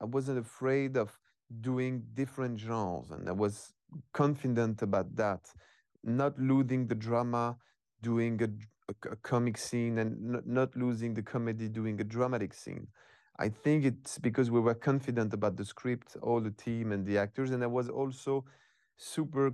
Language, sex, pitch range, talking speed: English, male, 110-130 Hz, 160 wpm